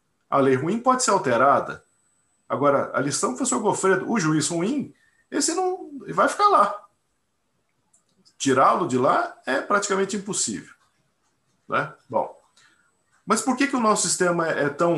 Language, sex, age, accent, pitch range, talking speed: Portuguese, male, 50-69, Brazilian, 135-225 Hz, 150 wpm